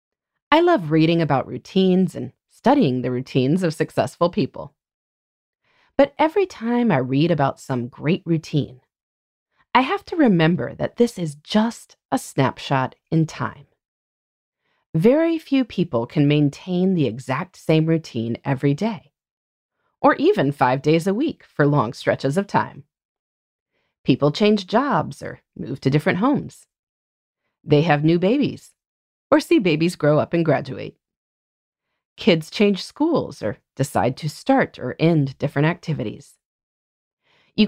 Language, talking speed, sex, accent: English, 135 wpm, female, American